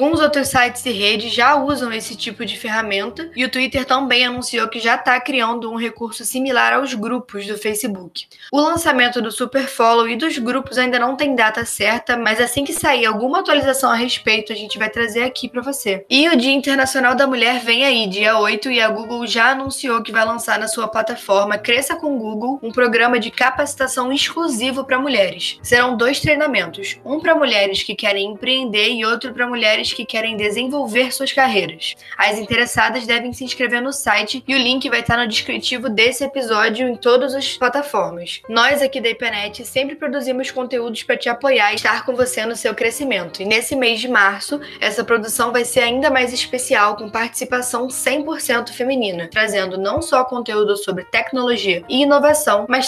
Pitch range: 220-265 Hz